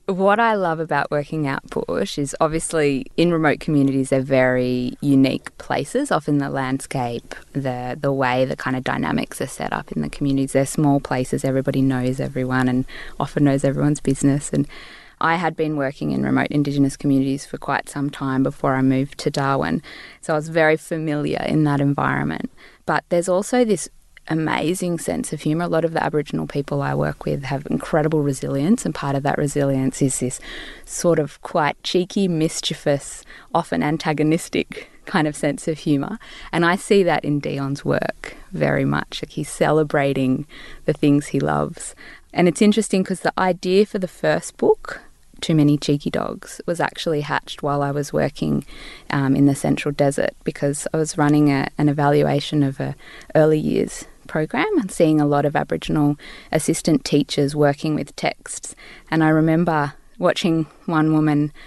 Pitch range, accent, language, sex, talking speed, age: 140-165 Hz, Australian, English, female, 175 wpm, 20-39